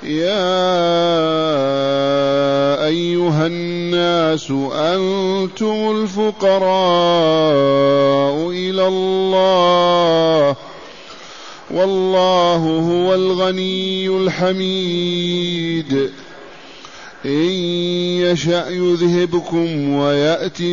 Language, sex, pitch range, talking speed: Arabic, male, 170-190 Hz, 45 wpm